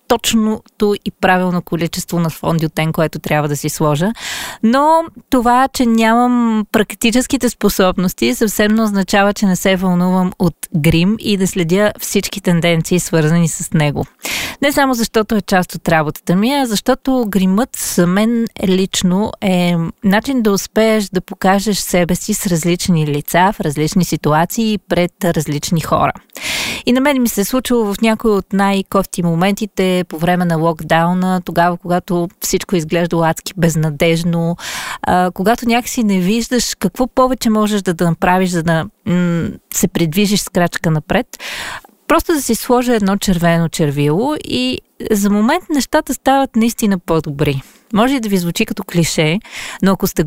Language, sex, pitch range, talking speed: Bulgarian, female, 170-225 Hz, 160 wpm